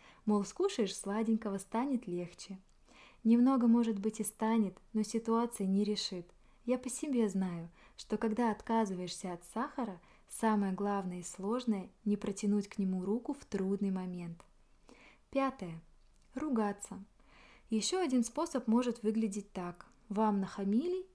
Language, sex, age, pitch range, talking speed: Russian, female, 20-39, 195-235 Hz, 130 wpm